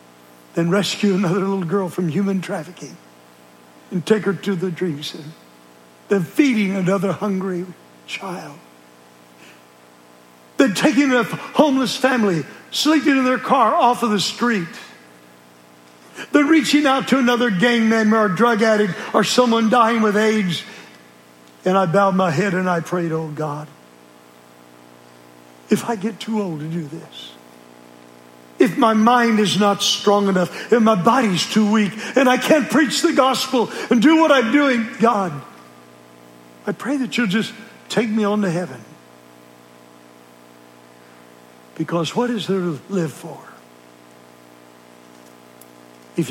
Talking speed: 140 wpm